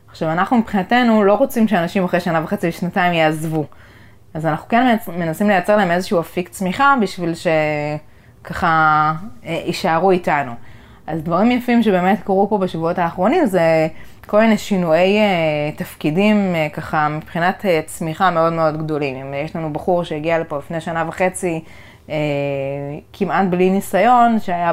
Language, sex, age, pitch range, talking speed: Hebrew, female, 20-39, 150-190 Hz, 150 wpm